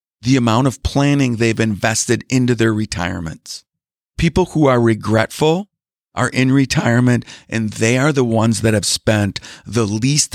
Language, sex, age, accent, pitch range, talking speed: English, male, 40-59, American, 105-135 Hz, 150 wpm